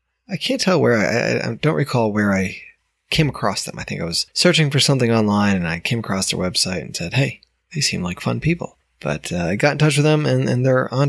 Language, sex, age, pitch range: English, male, 20-39, 100-145 Hz